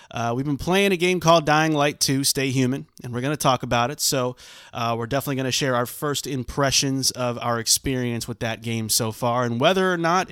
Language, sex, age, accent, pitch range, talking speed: English, male, 30-49, American, 120-160 Hz, 240 wpm